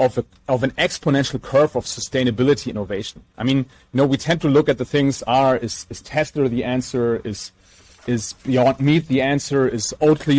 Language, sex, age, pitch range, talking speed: German, male, 30-49, 120-145 Hz, 195 wpm